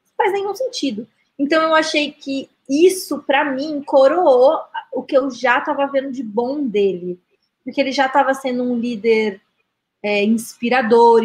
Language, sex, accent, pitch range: Portuguese, female, Brazilian, 225-275 Hz